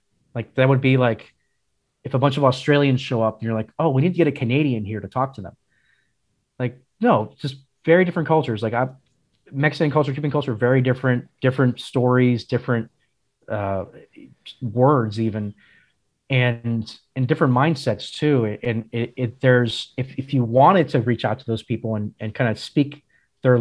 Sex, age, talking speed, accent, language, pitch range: male, 30-49, 185 wpm, American, English, 115-135 Hz